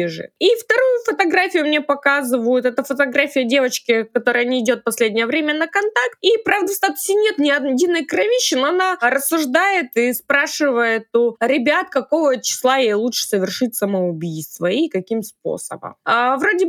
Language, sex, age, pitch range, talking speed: Russian, female, 20-39, 220-295 Hz, 145 wpm